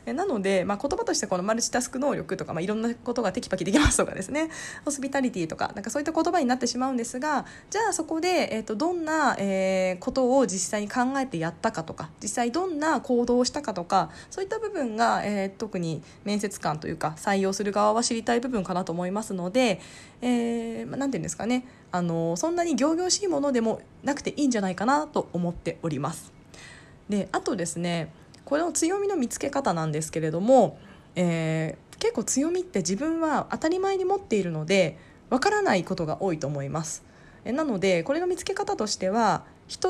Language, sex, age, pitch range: Japanese, female, 20-39, 180-285 Hz